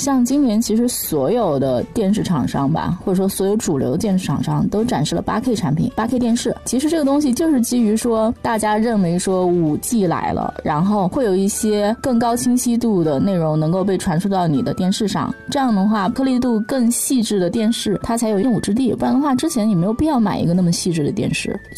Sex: female